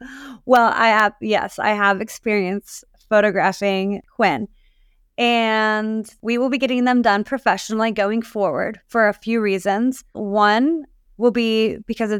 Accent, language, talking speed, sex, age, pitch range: American, English, 140 wpm, female, 20-39, 210-250 Hz